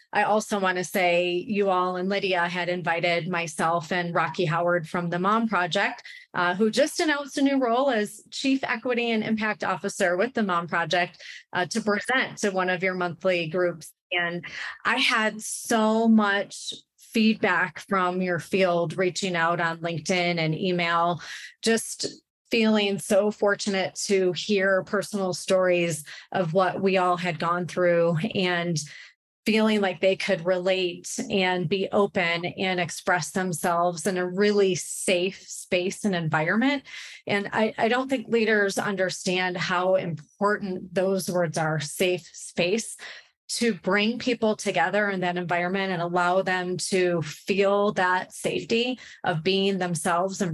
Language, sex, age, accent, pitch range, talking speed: English, female, 30-49, American, 175-205 Hz, 150 wpm